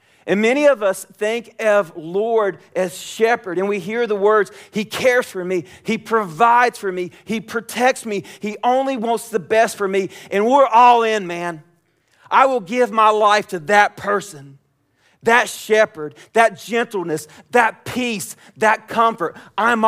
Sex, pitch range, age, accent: male, 115-190 Hz, 40-59, American